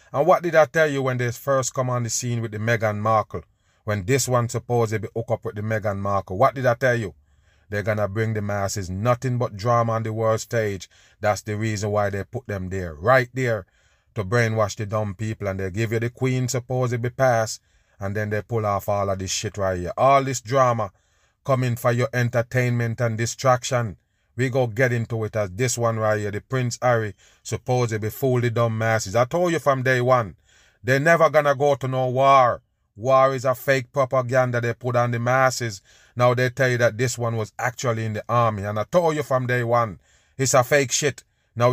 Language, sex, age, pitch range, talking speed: English, male, 30-49, 105-130 Hz, 225 wpm